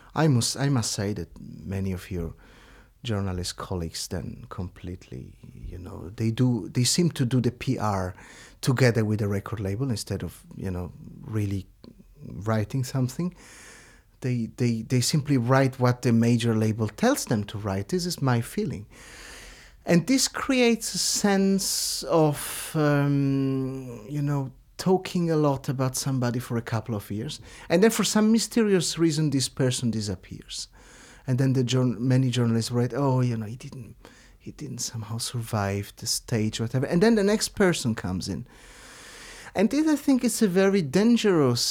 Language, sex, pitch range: English, male, 110-150 Hz